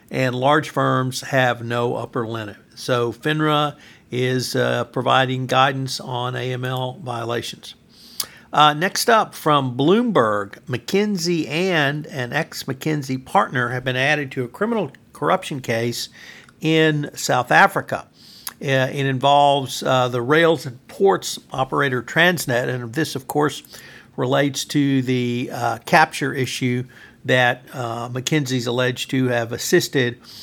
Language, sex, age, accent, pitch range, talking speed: English, male, 60-79, American, 120-145 Hz, 125 wpm